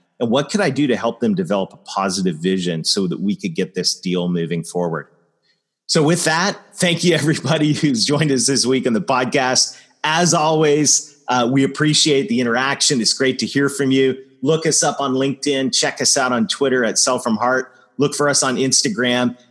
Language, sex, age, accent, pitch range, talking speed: English, male, 30-49, American, 125-155 Hz, 205 wpm